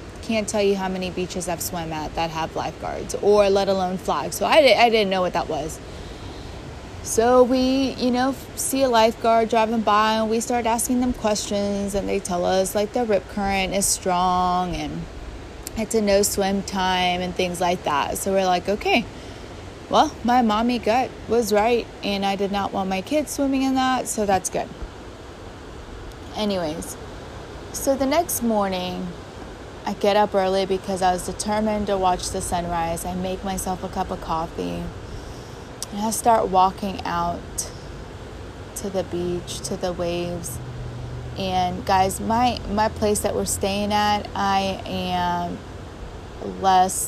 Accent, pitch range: American, 165-210 Hz